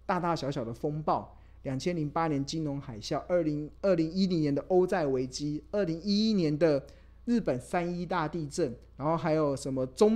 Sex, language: male, Chinese